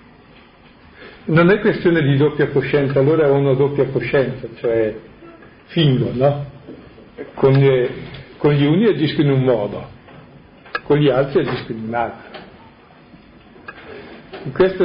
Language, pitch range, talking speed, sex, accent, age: Italian, 130-160 Hz, 120 wpm, male, native, 50-69